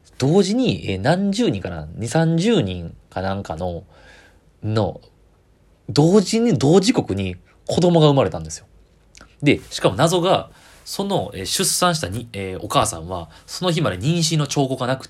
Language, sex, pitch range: Japanese, male, 95-155 Hz